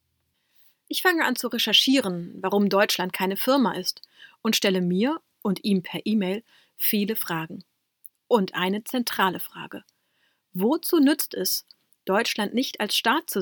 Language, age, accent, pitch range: German, 30-49, German, 185-240 Hz